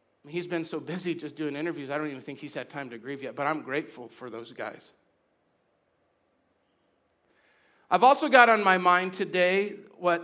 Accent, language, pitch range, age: American, English, 160-220 Hz, 40-59